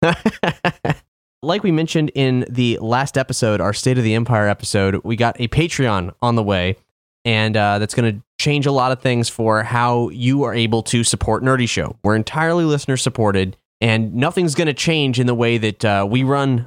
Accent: American